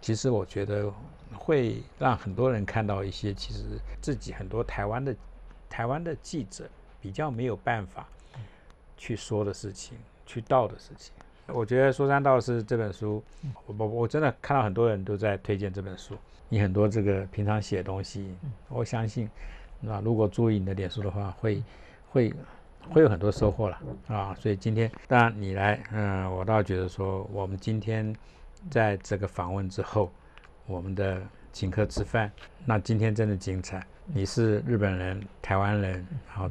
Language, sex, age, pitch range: Chinese, male, 60-79, 95-115 Hz